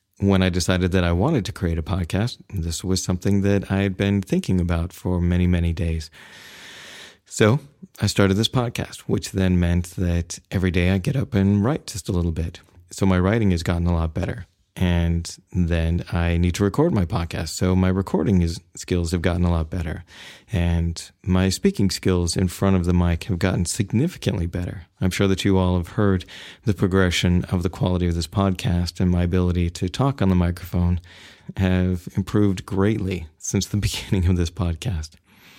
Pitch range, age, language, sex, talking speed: 90-100 Hz, 30-49, English, male, 190 wpm